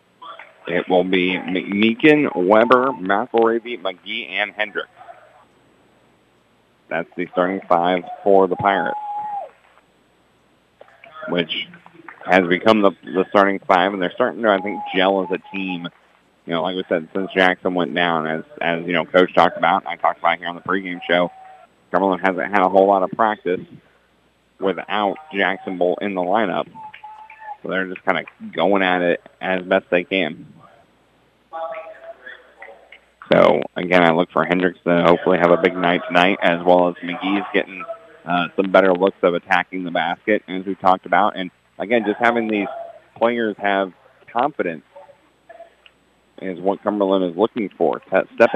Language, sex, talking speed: English, male, 160 wpm